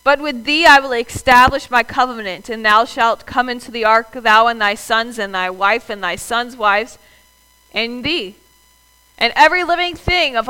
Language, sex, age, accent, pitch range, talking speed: English, female, 40-59, American, 195-260 Hz, 190 wpm